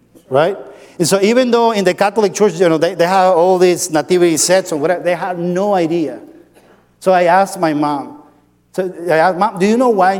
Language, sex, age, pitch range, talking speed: English, male, 50-69, 155-195 Hz, 220 wpm